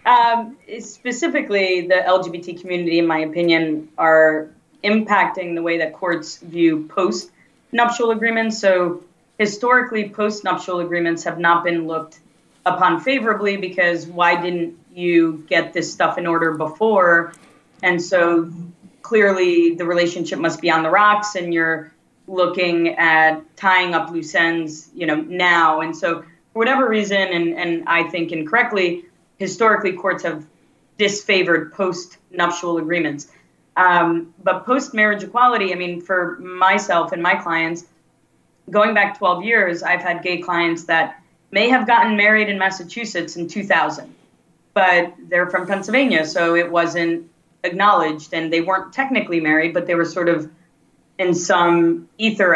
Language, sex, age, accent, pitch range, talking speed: English, female, 30-49, American, 165-195 Hz, 145 wpm